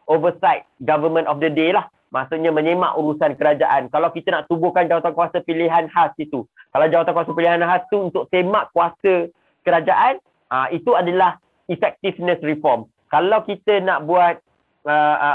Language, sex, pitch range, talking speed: Malay, male, 150-185 Hz, 155 wpm